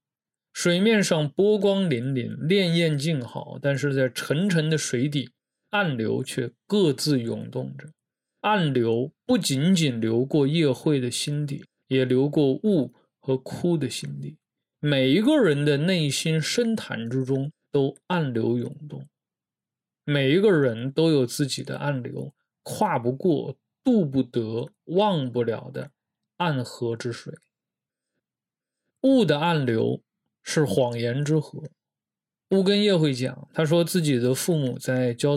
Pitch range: 130-165 Hz